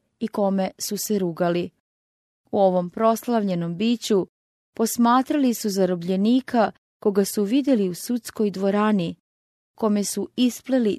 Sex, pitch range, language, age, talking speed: female, 185-230 Hz, English, 30-49, 115 wpm